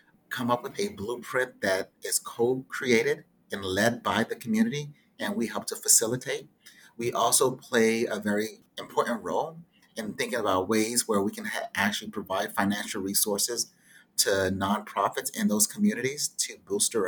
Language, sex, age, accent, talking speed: English, male, 30-49, American, 150 wpm